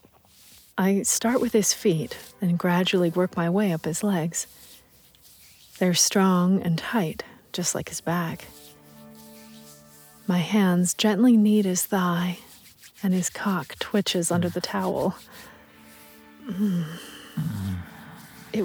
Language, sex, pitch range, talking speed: English, female, 165-205 Hz, 115 wpm